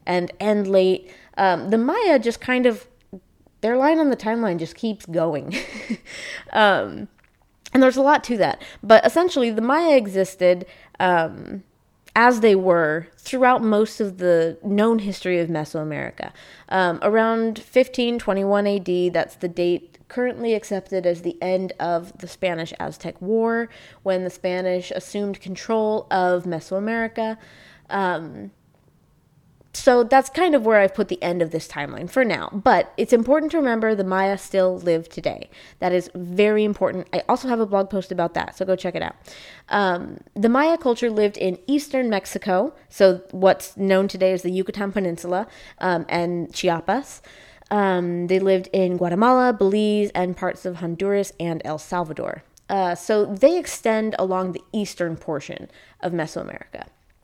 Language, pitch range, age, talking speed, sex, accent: English, 180-225 Hz, 20-39, 155 wpm, female, American